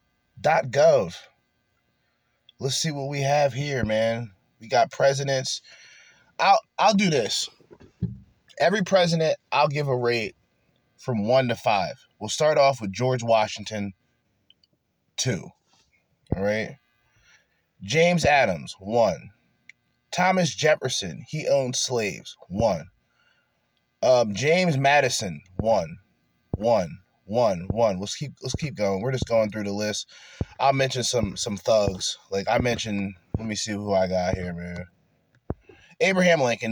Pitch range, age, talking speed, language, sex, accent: 105-140 Hz, 20-39, 130 wpm, English, male, American